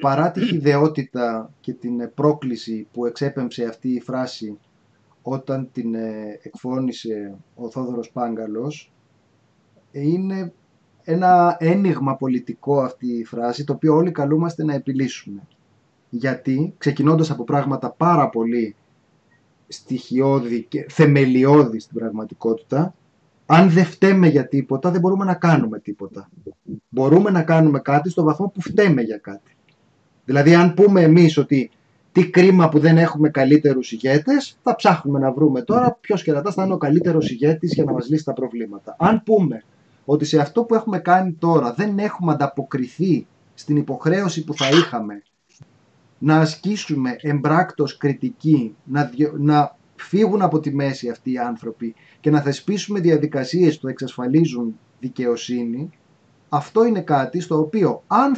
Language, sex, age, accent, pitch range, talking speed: Greek, male, 30-49, native, 125-170 Hz, 140 wpm